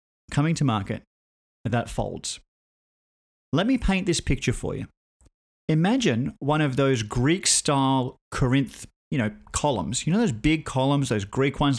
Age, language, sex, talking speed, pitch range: 30-49, English, male, 155 wpm, 120-165 Hz